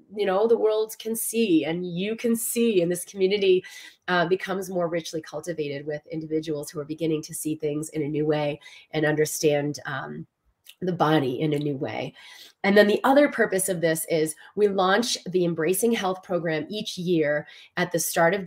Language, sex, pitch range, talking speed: English, female, 155-195 Hz, 190 wpm